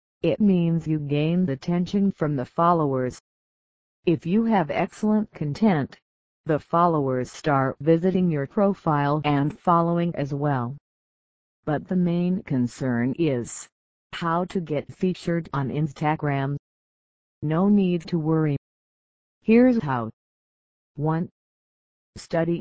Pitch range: 140-180 Hz